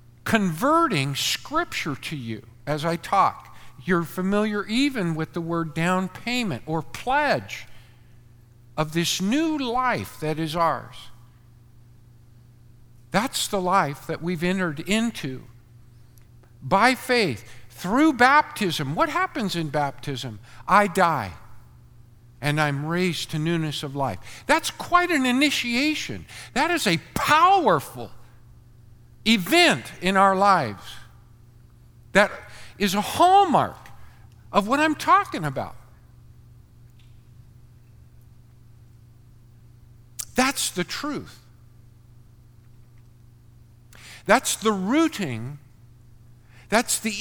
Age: 50-69